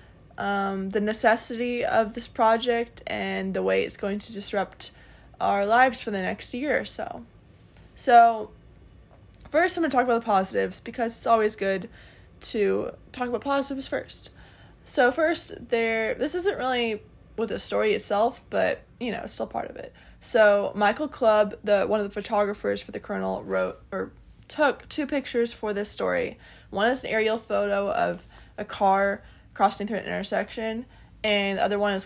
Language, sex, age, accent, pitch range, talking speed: English, female, 20-39, American, 200-245 Hz, 170 wpm